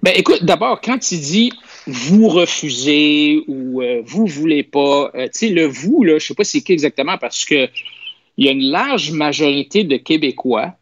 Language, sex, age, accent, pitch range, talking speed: French, male, 50-69, Canadian, 135-215 Hz, 190 wpm